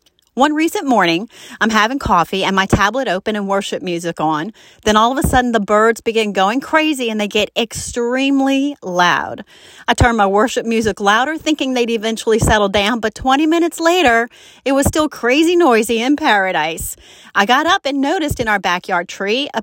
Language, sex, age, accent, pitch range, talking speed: English, female, 30-49, American, 195-275 Hz, 185 wpm